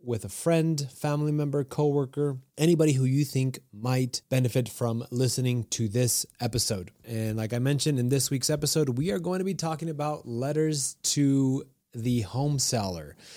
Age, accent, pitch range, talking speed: 30-49, American, 110-140 Hz, 165 wpm